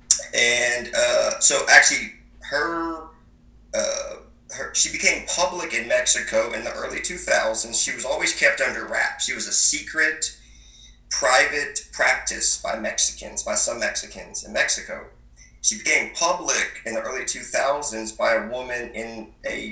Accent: American